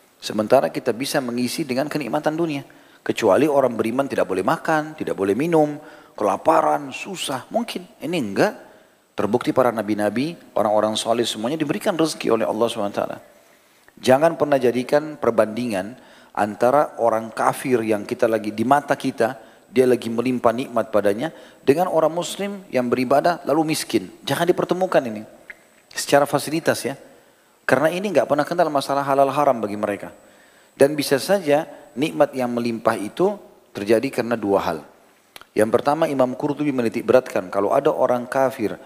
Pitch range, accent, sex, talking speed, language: 115-145 Hz, native, male, 145 wpm, Indonesian